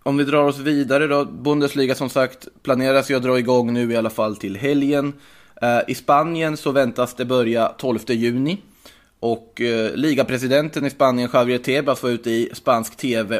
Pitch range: 115-140 Hz